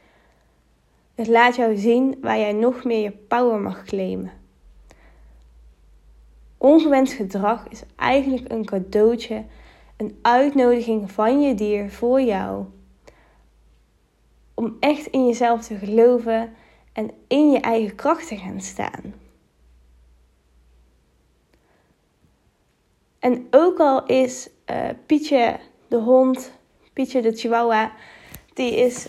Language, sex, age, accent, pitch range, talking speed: Dutch, female, 10-29, Dutch, 200-255 Hz, 105 wpm